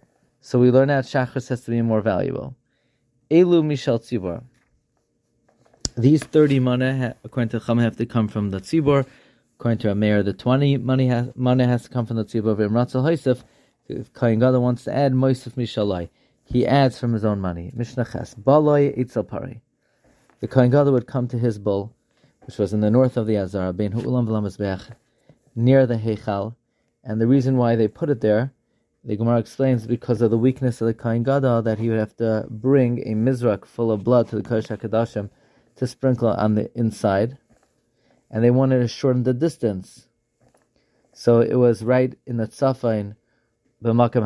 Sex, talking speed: male, 175 wpm